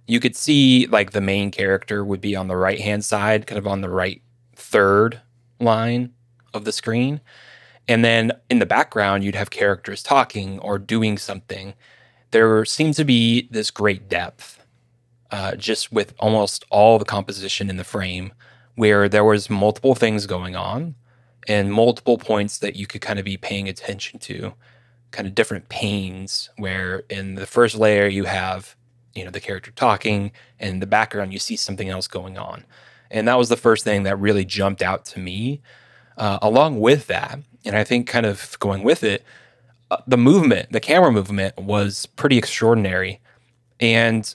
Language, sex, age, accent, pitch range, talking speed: English, male, 20-39, American, 100-120 Hz, 175 wpm